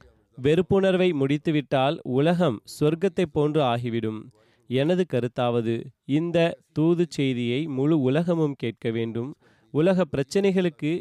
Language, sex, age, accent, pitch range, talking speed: Tamil, male, 30-49, native, 125-165 Hz, 95 wpm